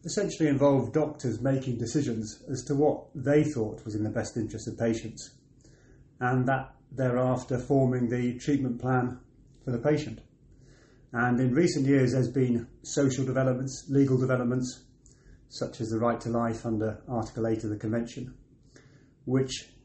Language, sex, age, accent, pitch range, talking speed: English, male, 30-49, British, 120-140 Hz, 150 wpm